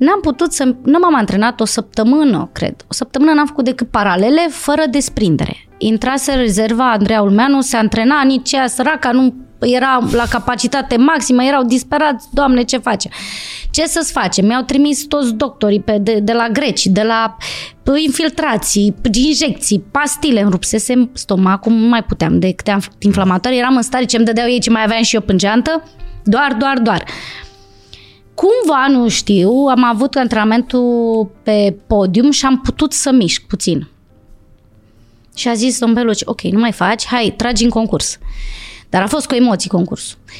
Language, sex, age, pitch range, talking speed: Romanian, female, 20-39, 205-265 Hz, 160 wpm